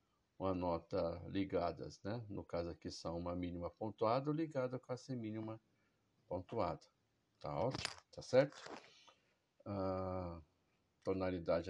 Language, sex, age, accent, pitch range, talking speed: Portuguese, male, 60-79, Brazilian, 85-95 Hz, 115 wpm